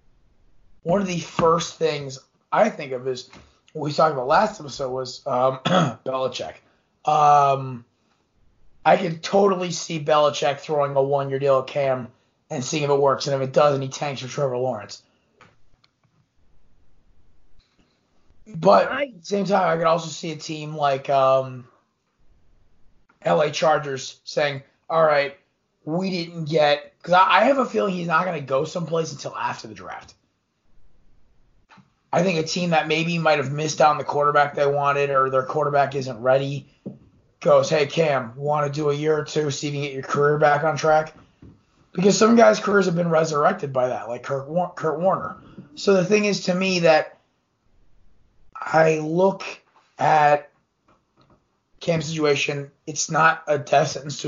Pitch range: 135-165 Hz